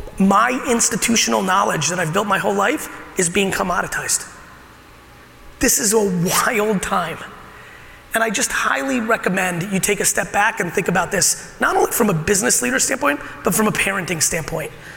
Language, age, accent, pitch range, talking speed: English, 30-49, American, 185-230 Hz, 170 wpm